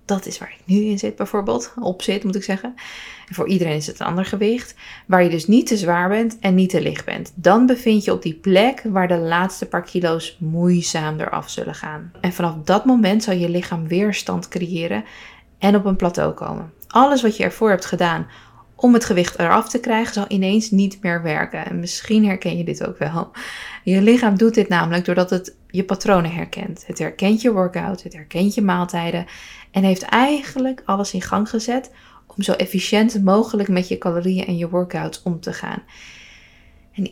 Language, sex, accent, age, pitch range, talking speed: Dutch, female, Dutch, 20-39, 180-215 Hz, 200 wpm